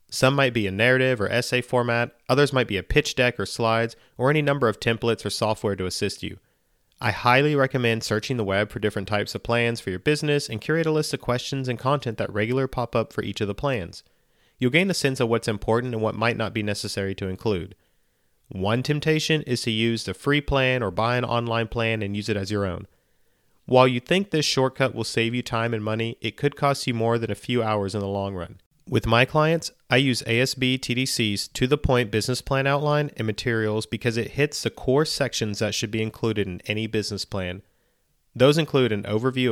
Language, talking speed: English, 220 wpm